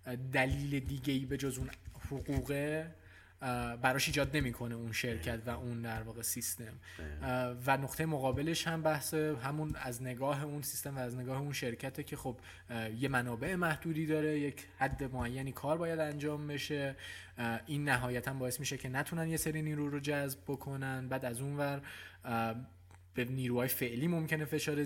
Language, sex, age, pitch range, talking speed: Persian, male, 20-39, 120-140 Hz, 150 wpm